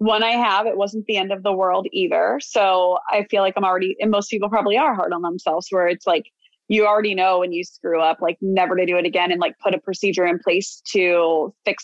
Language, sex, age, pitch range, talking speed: English, female, 20-39, 185-215 Hz, 255 wpm